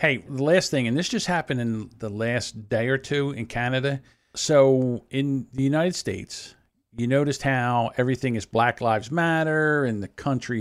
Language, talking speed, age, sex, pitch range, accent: English, 180 wpm, 50-69, male, 115-145 Hz, American